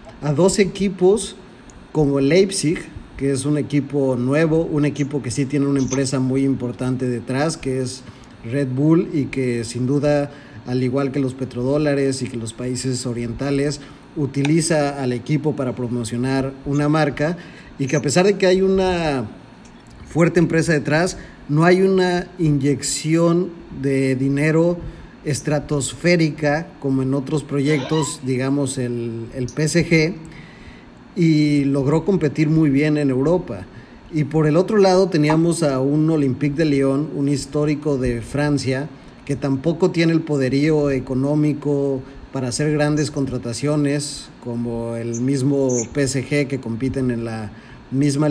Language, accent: Spanish, Mexican